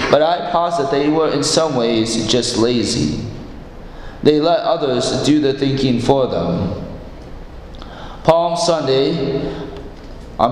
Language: English